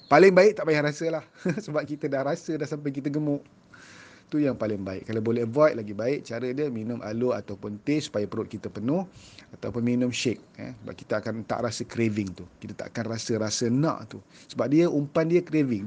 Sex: male